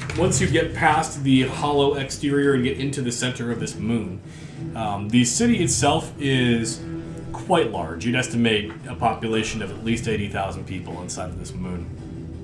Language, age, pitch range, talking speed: English, 30-49, 100-135 Hz, 170 wpm